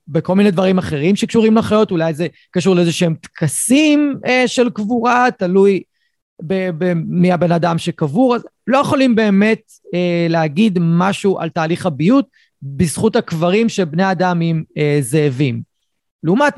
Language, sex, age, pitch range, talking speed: Hebrew, male, 30-49, 165-230 Hz, 140 wpm